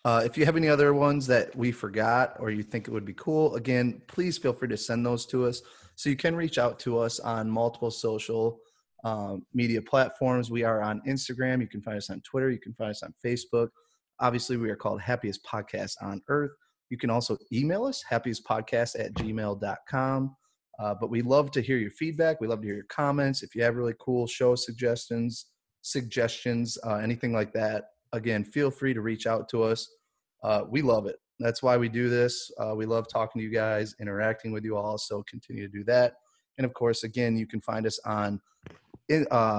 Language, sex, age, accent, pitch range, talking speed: English, male, 30-49, American, 110-130 Hz, 210 wpm